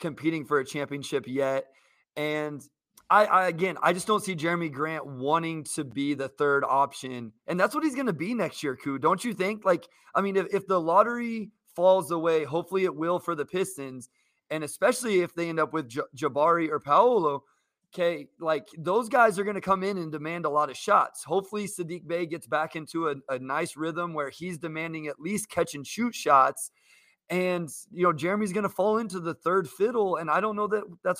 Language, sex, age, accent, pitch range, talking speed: English, male, 20-39, American, 150-190 Hz, 210 wpm